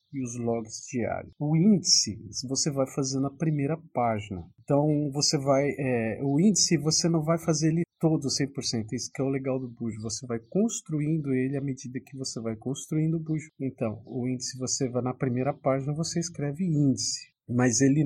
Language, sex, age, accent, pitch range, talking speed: Portuguese, male, 40-59, Brazilian, 125-155 Hz, 190 wpm